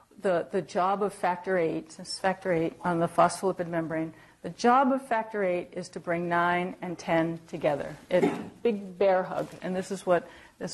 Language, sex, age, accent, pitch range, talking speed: English, female, 50-69, American, 170-195 Hz, 195 wpm